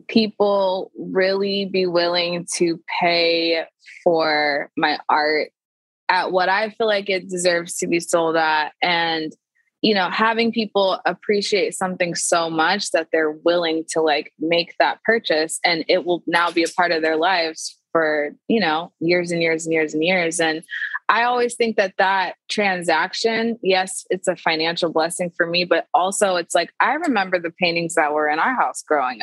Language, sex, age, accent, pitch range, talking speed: English, female, 20-39, American, 165-195 Hz, 175 wpm